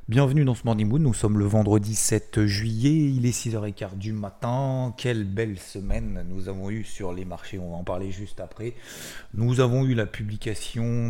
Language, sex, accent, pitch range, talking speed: French, male, French, 100-125 Hz, 195 wpm